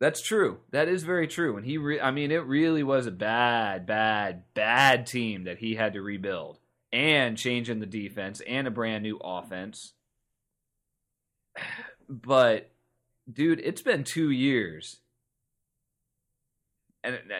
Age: 30-49